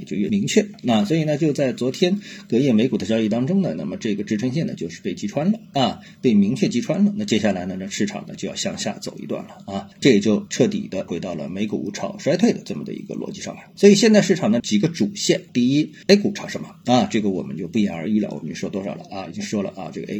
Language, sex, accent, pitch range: Chinese, male, native, 135-205 Hz